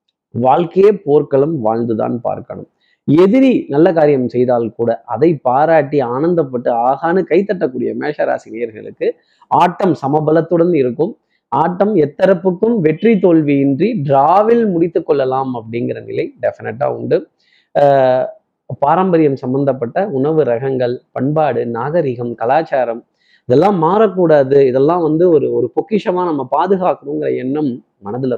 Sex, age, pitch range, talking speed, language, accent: male, 30-49, 135-185 Hz, 95 wpm, Tamil, native